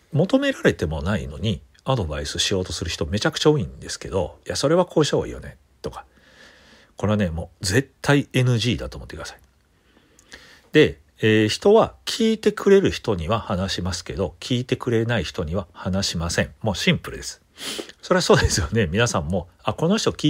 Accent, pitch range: native, 85-135 Hz